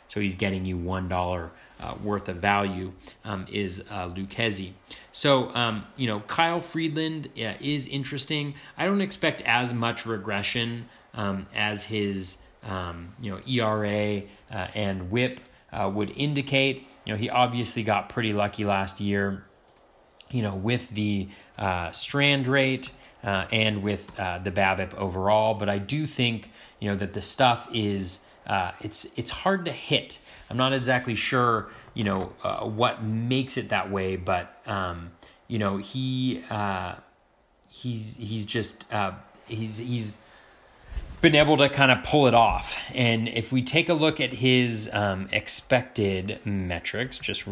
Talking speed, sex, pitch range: 155 wpm, male, 100-125 Hz